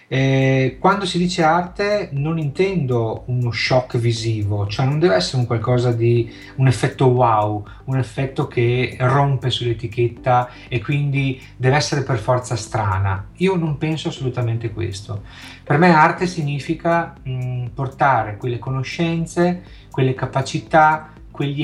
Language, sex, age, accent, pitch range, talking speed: Italian, male, 30-49, native, 110-135 Hz, 135 wpm